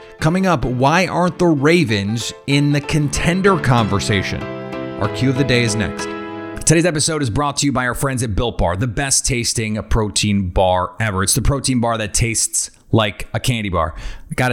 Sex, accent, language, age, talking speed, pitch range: male, American, English, 30-49, 195 wpm, 105-130 Hz